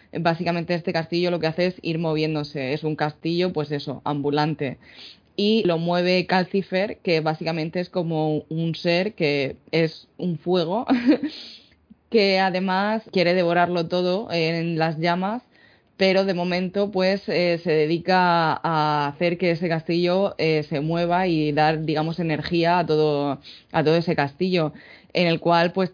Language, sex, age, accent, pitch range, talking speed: Spanish, female, 20-39, Spanish, 155-175 Hz, 150 wpm